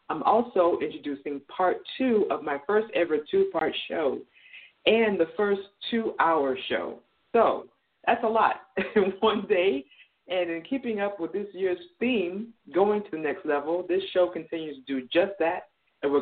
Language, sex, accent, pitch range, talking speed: English, female, American, 140-205 Hz, 165 wpm